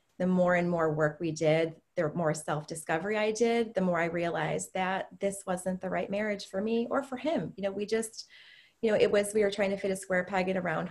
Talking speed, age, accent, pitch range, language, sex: 255 wpm, 30-49, American, 185-205 Hz, English, female